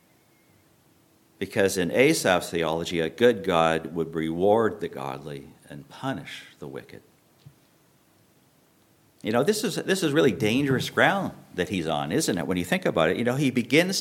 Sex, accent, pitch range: male, American, 100-145 Hz